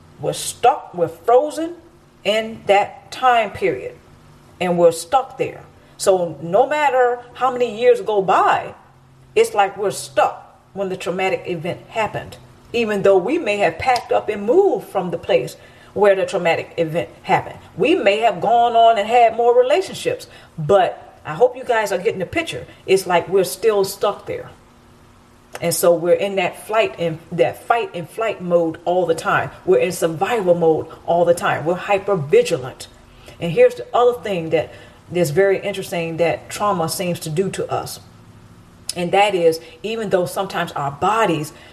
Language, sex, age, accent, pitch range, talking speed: English, female, 40-59, American, 170-230 Hz, 170 wpm